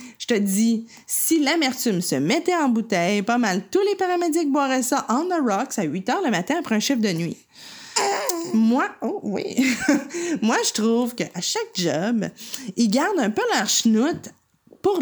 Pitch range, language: 215-285 Hz, French